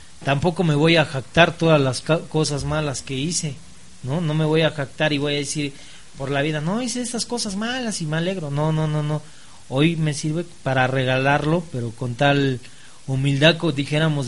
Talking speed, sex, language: 200 wpm, male, Spanish